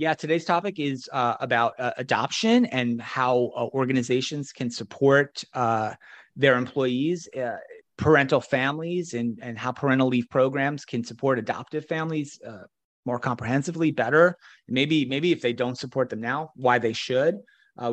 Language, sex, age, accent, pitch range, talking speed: English, male, 30-49, American, 125-150 Hz, 155 wpm